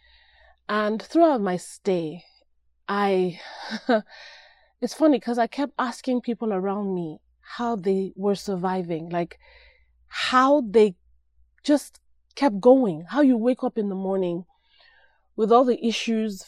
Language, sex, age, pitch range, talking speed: English, female, 30-49, 185-235 Hz, 125 wpm